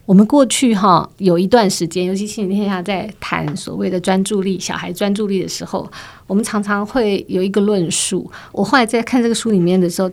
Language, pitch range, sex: Chinese, 185-220 Hz, female